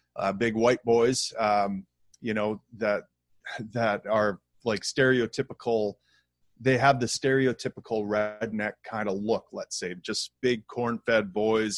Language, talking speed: English, 140 wpm